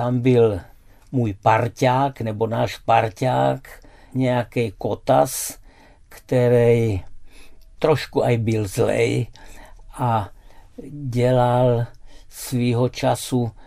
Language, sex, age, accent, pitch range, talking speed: Czech, male, 60-79, native, 115-130 Hz, 80 wpm